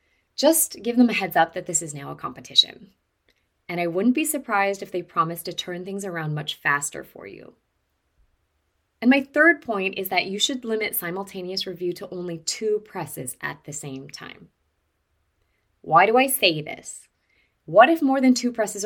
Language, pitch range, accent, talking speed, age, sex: English, 155-225 Hz, American, 185 wpm, 20-39, female